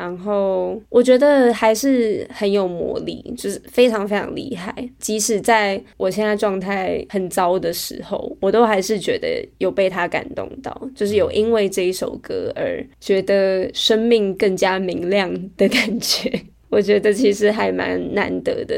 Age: 20-39